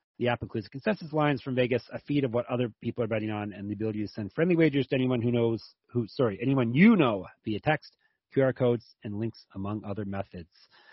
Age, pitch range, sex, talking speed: 30-49, 110-135 Hz, male, 225 wpm